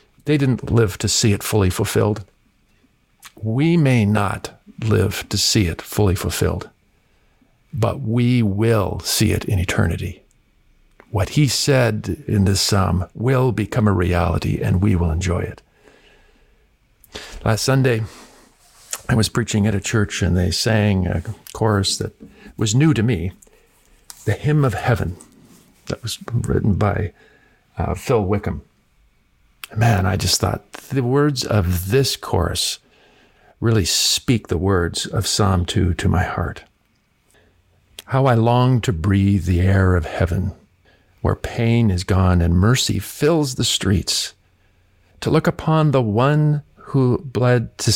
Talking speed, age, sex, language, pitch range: 140 wpm, 50-69, male, English, 95-120 Hz